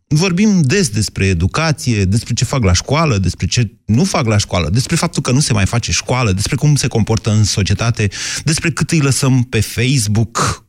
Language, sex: Romanian, male